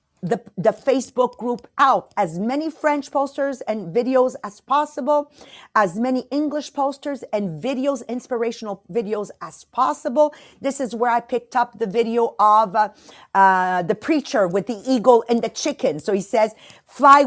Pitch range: 215-275 Hz